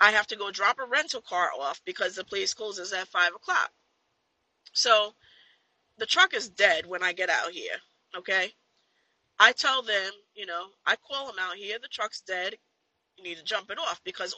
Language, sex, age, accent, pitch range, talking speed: English, female, 20-39, American, 200-260 Hz, 195 wpm